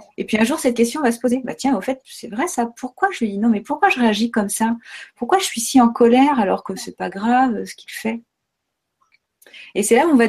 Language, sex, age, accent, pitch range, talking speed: French, female, 30-49, French, 215-260 Hz, 280 wpm